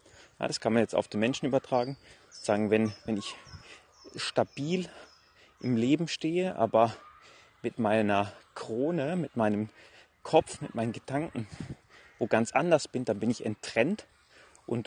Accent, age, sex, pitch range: German, 30-49, male, 110-150 Hz